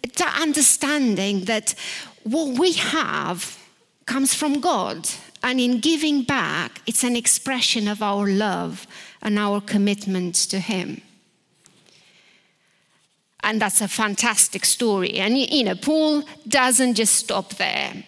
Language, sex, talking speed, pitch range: English, female, 125 wpm, 195-260 Hz